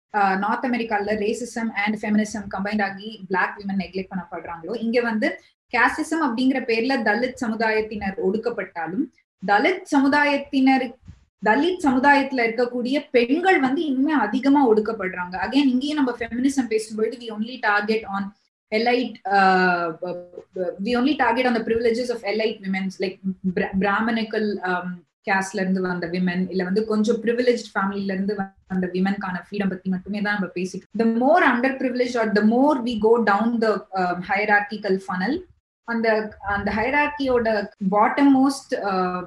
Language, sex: Tamil, female